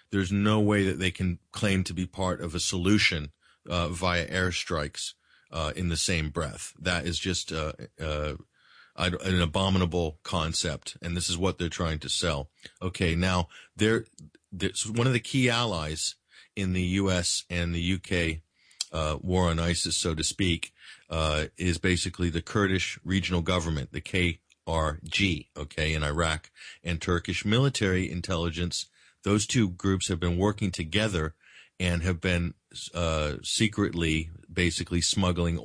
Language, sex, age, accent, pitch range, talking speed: English, male, 40-59, American, 80-95 Hz, 150 wpm